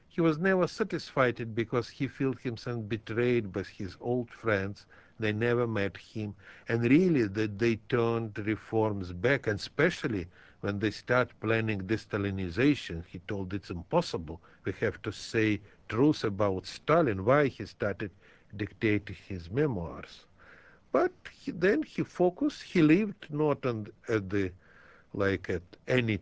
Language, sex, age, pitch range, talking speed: English, male, 60-79, 95-120 Hz, 145 wpm